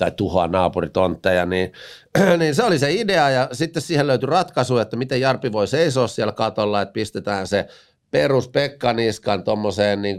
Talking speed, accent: 165 wpm, native